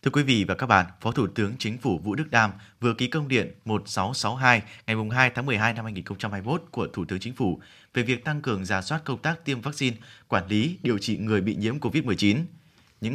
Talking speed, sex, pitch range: 225 wpm, male, 105-140 Hz